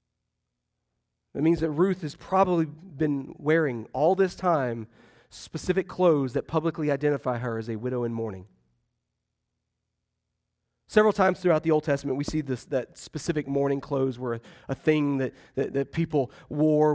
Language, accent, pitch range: English, American, 155-190 Hz